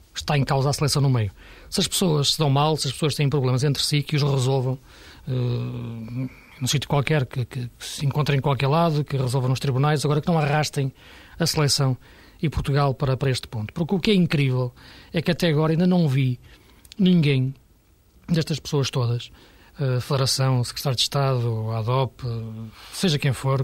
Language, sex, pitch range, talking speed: Portuguese, male, 135-160 Hz, 195 wpm